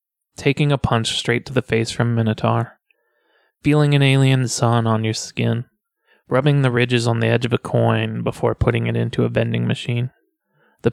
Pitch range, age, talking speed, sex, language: 115-130 Hz, 20-39, 180 wpm, male, English